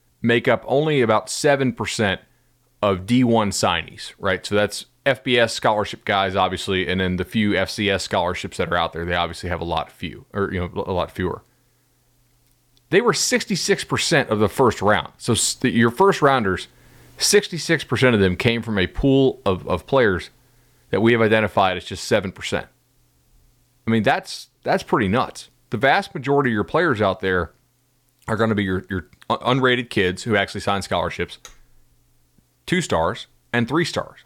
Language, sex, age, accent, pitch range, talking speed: English, male, 40-59, American, 95-130 Hz, 170 wpm